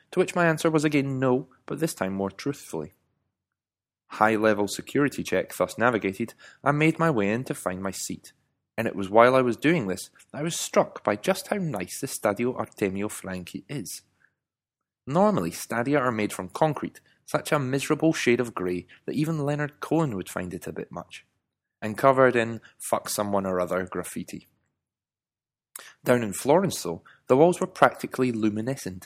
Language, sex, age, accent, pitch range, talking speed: English, male, 20-39, British, 100-145 Hz, 170 wpm